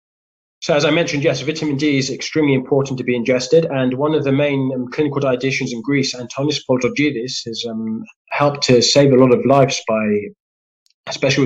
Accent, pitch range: British, 115-140 Hz